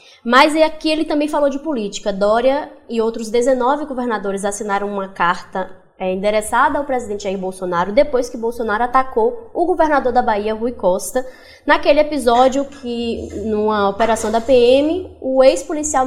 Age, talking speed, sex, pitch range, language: 10-29, 150 wpm, female, 215-275 Hz, Portuguese